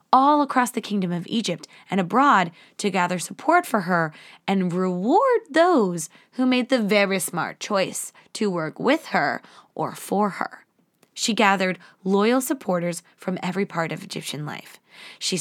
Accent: American